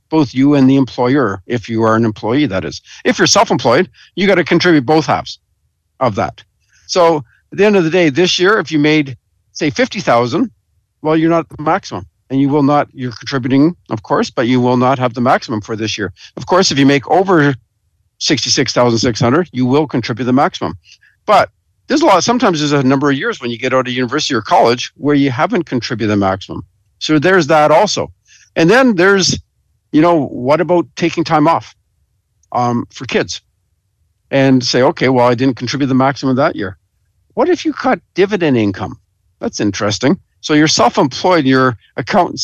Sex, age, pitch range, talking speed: male, 50-69, 115-160 Hz, 195 wpm